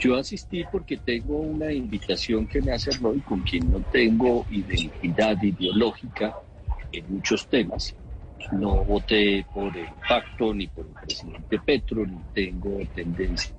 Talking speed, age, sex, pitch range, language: 140 wpm, 50-69, male, 100-140 Hz, Spanish